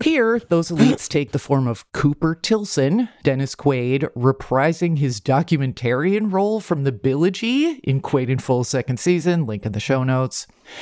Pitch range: 125-170 Hz